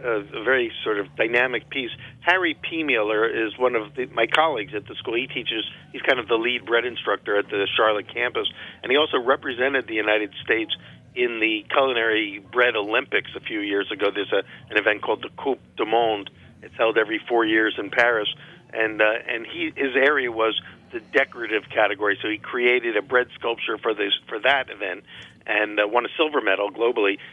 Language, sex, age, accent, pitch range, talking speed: English, male, 50-69, American, 110-130 Hz, 200 wpm